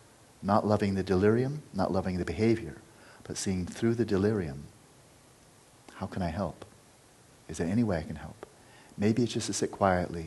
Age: 40-59